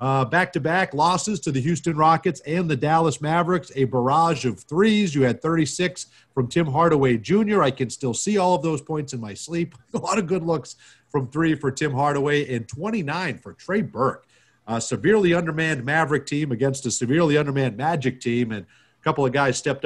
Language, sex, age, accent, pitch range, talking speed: English, male, 40-59, American, 130-180 Hz, 195 wpm